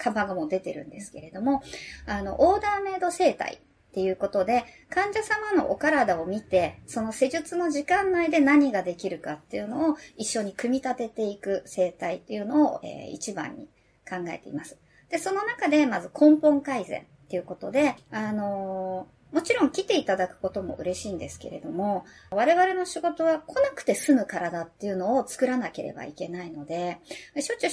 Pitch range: 195-315 Hz